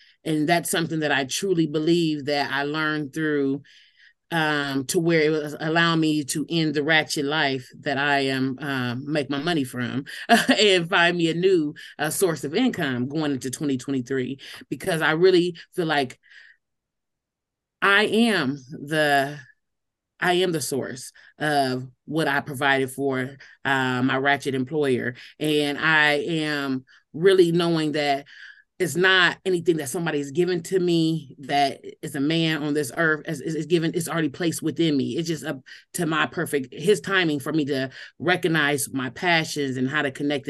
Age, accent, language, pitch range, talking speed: 30-49, American, English, 140-165 Hz, 170 wpm